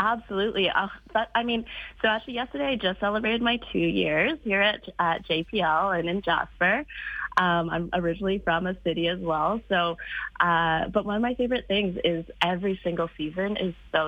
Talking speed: 185 wpm